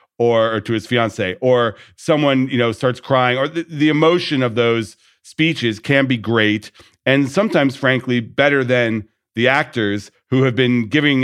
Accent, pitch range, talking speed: American, 115-135 Hz, 165 wpm